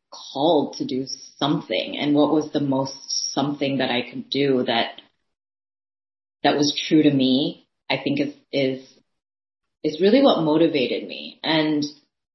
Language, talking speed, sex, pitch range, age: English, 145 wpm, female, 135-165 Hz, 30-49